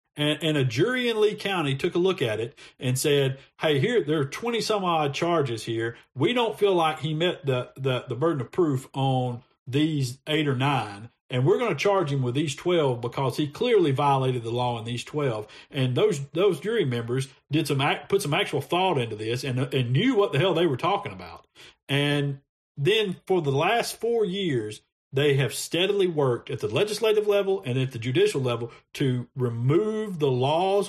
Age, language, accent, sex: 50-69, English, American, male